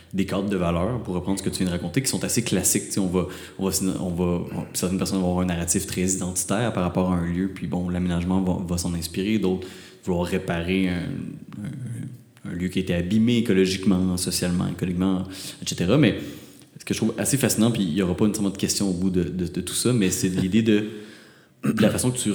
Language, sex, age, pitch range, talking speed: French, male, 30-49, 90-105 Hz, 245 wpm